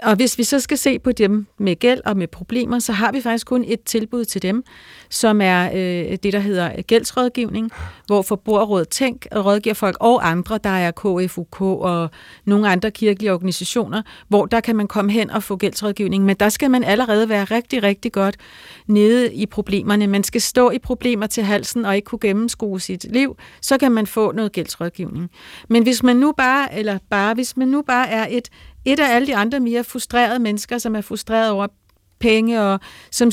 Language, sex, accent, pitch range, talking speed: Danish, female, native, 200-240 Hz, 200 wpm